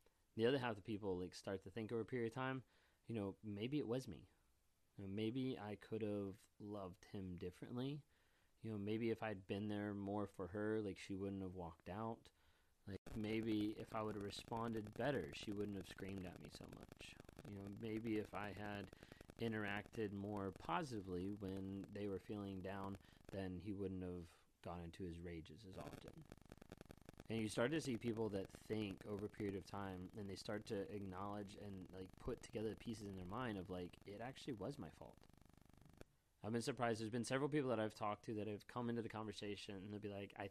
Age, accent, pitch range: 30-49, American, 95-115 Hz